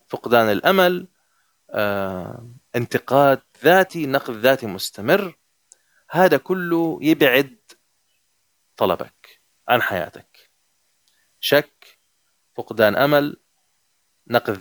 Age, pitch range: 30-49, 115-160 Hz